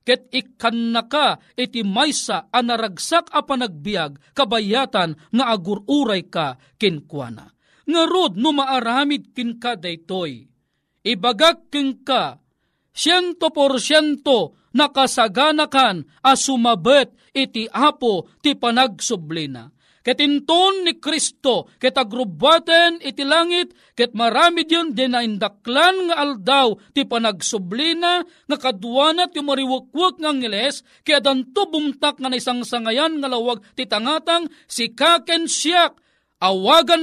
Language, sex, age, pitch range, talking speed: Filipino, male, 40-59, 230-305 Hz, 110 wpm